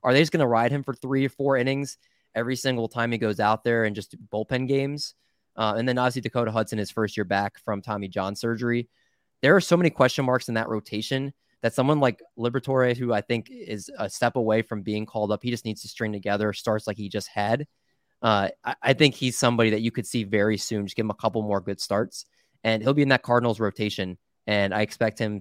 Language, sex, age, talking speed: English, male, 20-39, 245 wpm